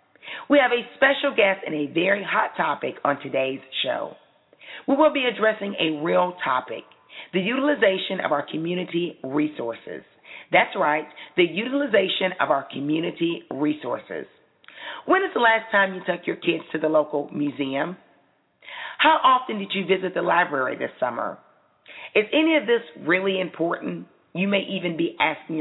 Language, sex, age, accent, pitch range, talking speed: English, female, 40-59, American, 155-235 Hz, 155 wpm